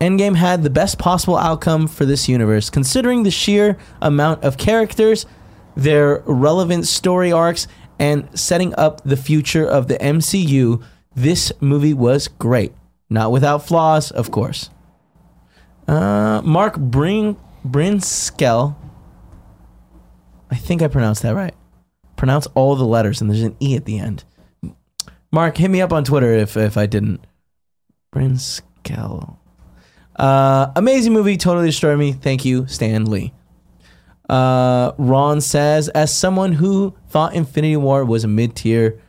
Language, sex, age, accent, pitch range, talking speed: English, male, 20-39, American, 120-160 Hz, 140 wpm